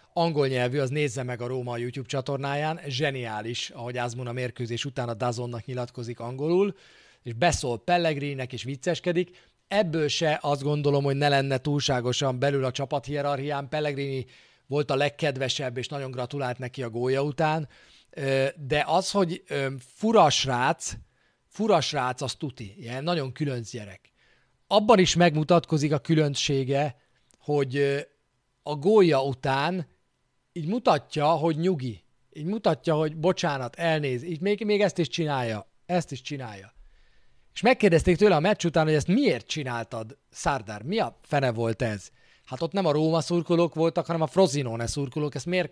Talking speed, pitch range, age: 155 wpm, 125-170 Hz, 40-59